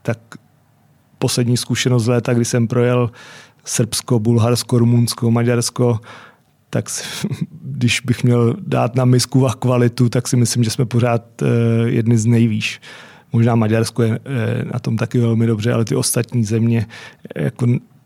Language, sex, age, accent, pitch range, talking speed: Czech, male, 30-49, native, 120-135 Hz, 145 wpm